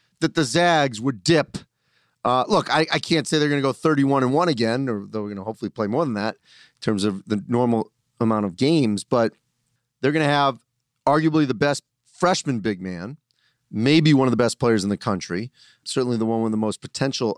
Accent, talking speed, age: American, 215 wpm, 40-59